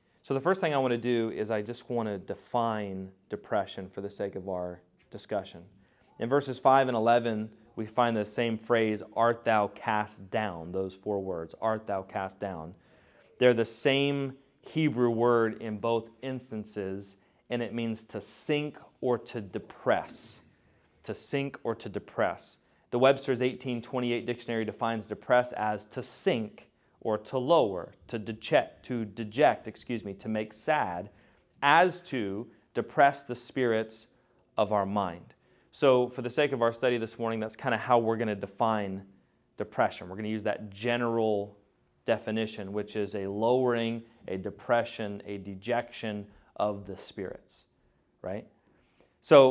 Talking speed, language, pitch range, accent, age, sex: 155 wpm, English, 105-125 Hz, American, 30-49, male